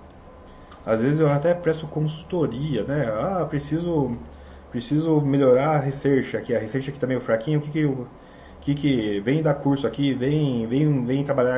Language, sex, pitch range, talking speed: Portuguese, male, 110-145 Hz, 180 wpm